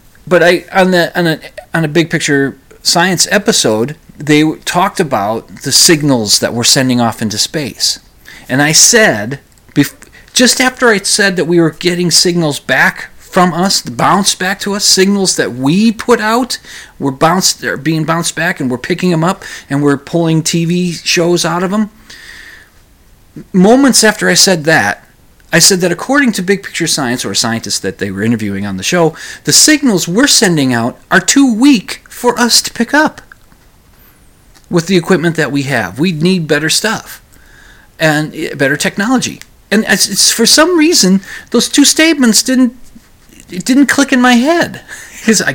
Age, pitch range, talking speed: 30-49, 155-225 Hz, 175 wpm